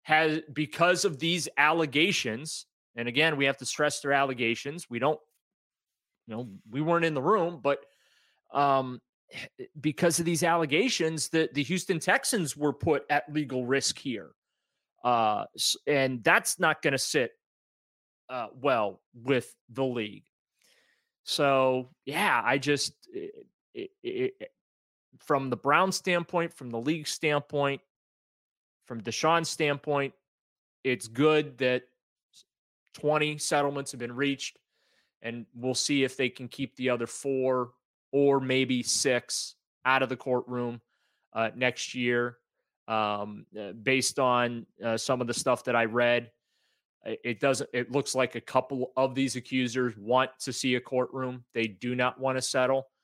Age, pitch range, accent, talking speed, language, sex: 30-49, 125-150 Hz, American, 140 wpm, English, male